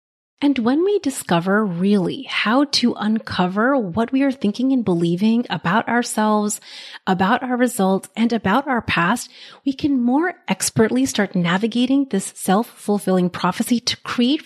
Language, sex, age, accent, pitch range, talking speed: English, female, 30-49, American, 190-245 Hz, 140 wpm